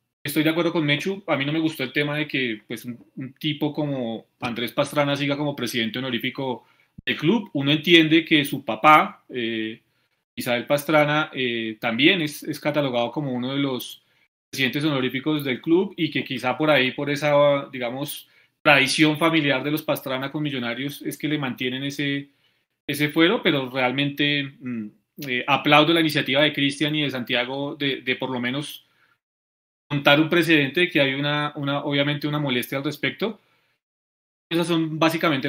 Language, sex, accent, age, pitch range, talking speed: Spanish, male, Colombian, 30-49, 130-155 Hz, 175 wpm